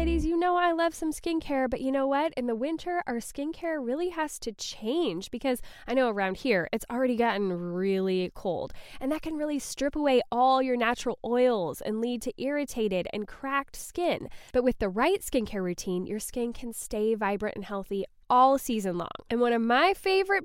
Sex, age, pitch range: female, 10-29, 215-290 Hz